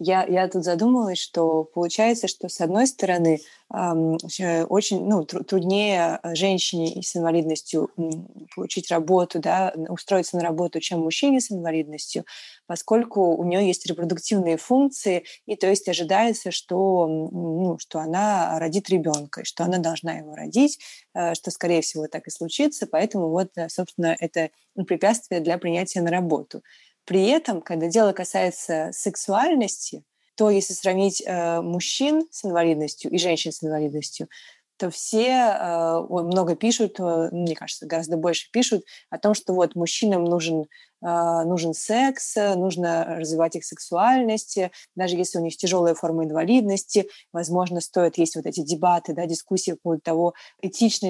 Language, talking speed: Russian, 140 wpm